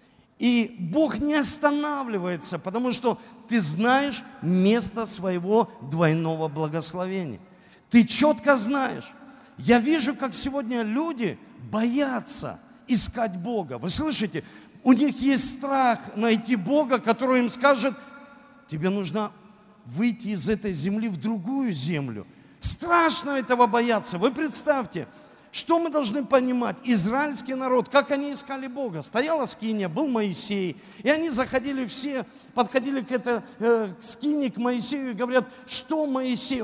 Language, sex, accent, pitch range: Russian, male, native, 220-280 Hz